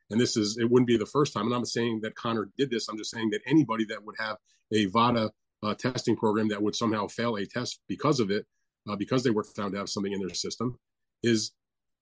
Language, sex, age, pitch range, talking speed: English, male, 30-49, 110-140 Hz, 255 wpm